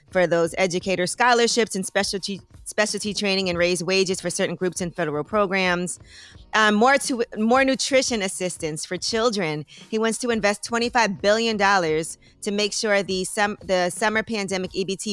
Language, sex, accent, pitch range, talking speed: English, female, American, 175-215 Hz, 160 wpm